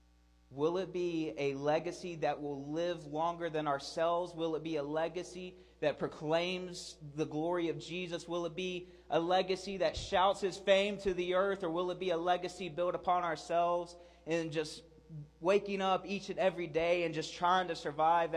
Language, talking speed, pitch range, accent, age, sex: English, 185 wpm, 155-195 Hz, American, 20-39, male